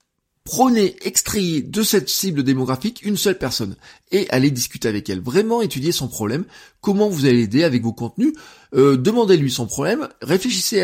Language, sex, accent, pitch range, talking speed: French, male, French, 130-200 Hz, 165 wpm